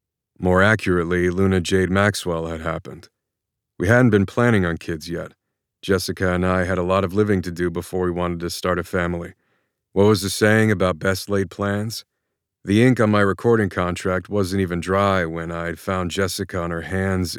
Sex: male